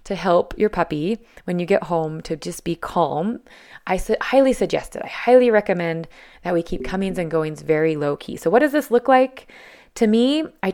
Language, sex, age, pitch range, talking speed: English, female, 20-39, 170-220 Hz, 205 wpm